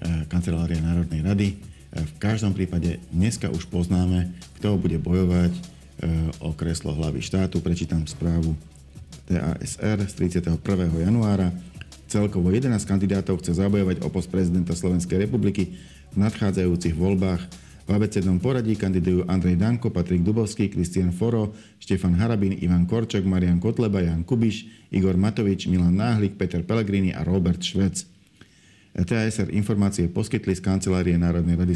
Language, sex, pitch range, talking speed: Slovak, male, 90-105 Hz, 130 wpm